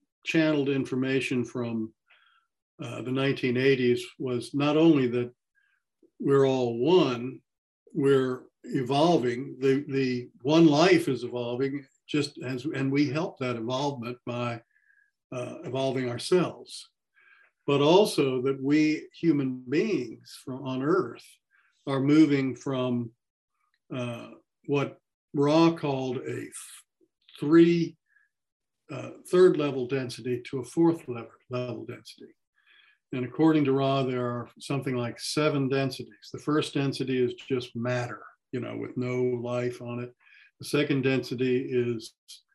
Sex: male